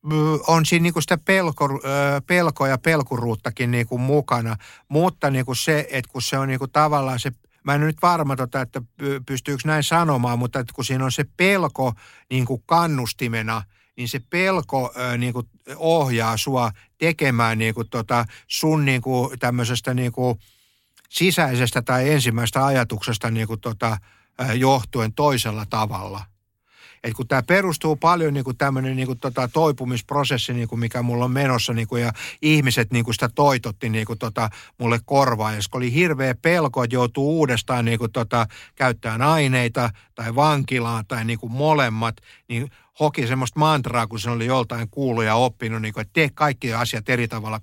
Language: Finnish